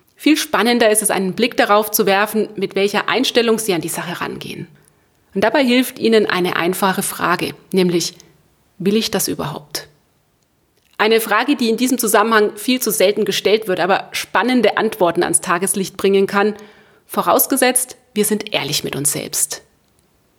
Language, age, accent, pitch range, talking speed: German, 30-49, German, 190-240 Hz, 160 wpm